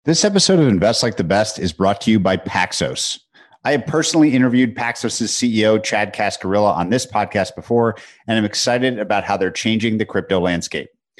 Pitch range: 100-125 Hz